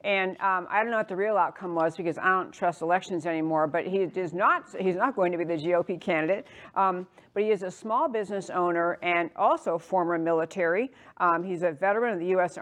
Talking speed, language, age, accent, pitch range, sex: 225 wpm, English, 50-69, American, 170-215 Hz, female